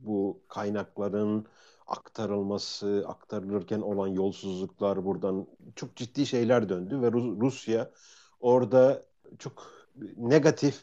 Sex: male